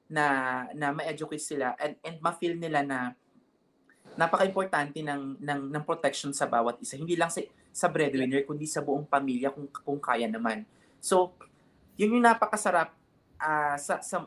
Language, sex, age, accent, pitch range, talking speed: English, male, 20-39, Filipino, 140-180 Hz, 155 wpm